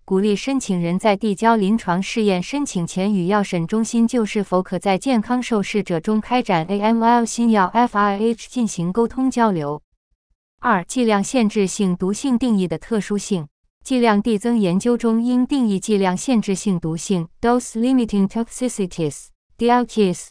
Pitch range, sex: 180-235 Hz, female